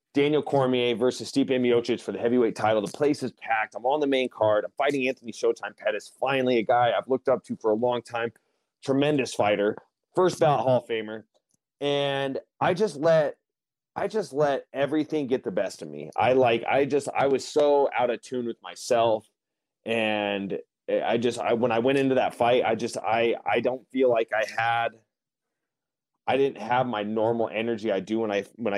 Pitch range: 105-135 Hz